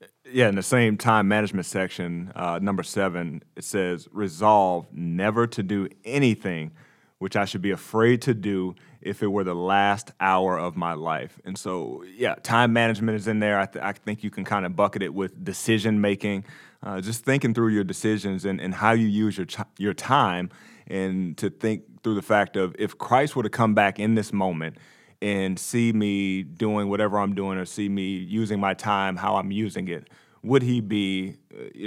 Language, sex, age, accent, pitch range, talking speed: English, male, 30-49, American, 95-110 Hz, 200 wpm